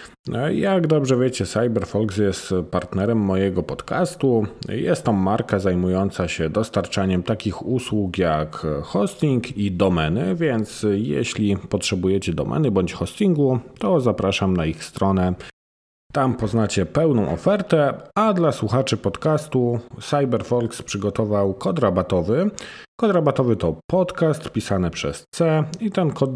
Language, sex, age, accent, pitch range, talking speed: Polish, male, 40-59, native, 100-140 Hz, 120 wpm